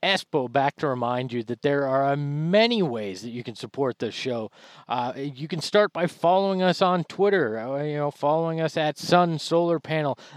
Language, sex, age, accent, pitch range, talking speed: English, male, 40-59, American, 130-175 Hz, 190 wpm